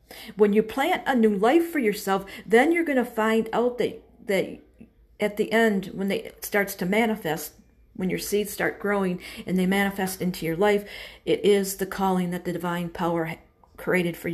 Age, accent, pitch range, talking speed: 50-69, American, 170-205 Hz, 195 wpm